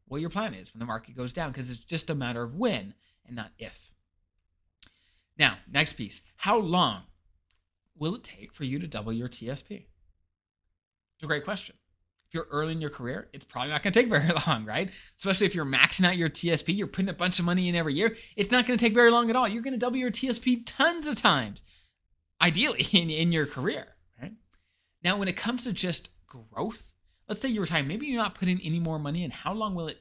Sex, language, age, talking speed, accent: male, English, 20-39, 225 wpm, American